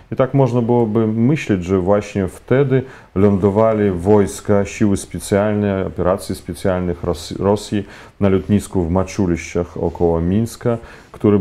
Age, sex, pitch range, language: 30-49, male, 90-120 Hz, Polish